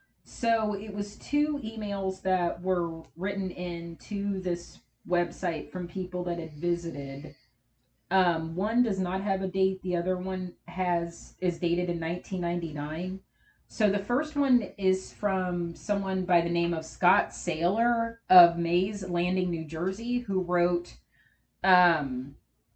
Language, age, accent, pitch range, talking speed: English, 30-49, American, 170-205 Hz, 140 wpm